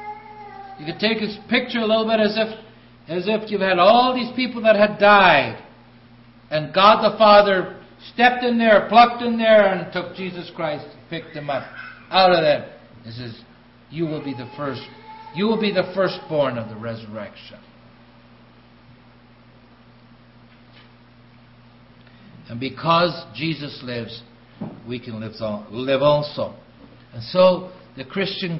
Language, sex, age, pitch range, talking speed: English, male, 60-79, 120-190 Hz, 145 wpm